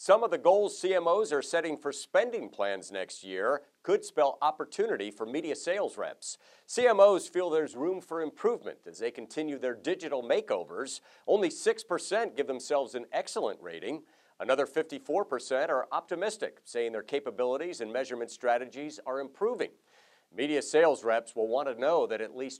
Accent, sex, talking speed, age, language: American, male, 160 wpm, 50-69, English